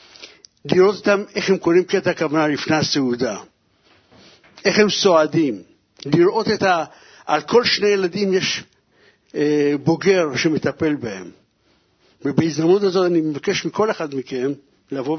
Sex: male